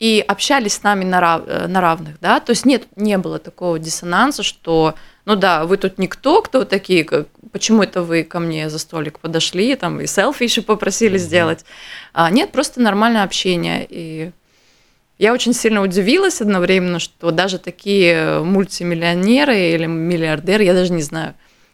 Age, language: 20-39, Russian